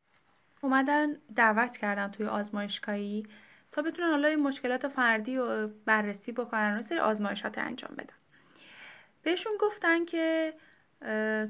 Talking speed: 115 wpm